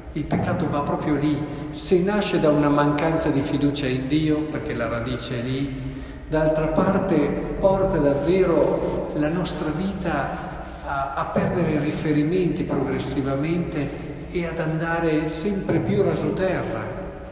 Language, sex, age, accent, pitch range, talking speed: Italian, male, 50-69, native, 140-170 Hz, 130 wpm